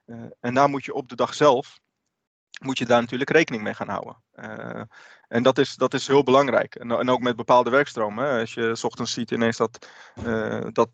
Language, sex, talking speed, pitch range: Dutch, male, 220 wpm, 110-130 Hz